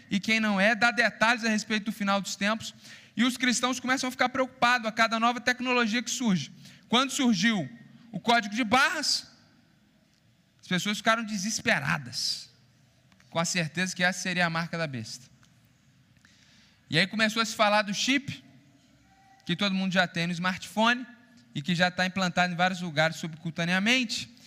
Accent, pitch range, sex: Brazilian, 165-230 Hz, male